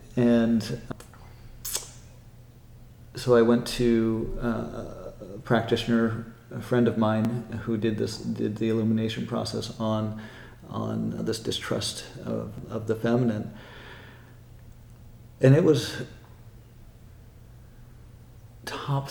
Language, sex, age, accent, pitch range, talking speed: English, male, 40-59, American, 110-120 Hz, 95 wpm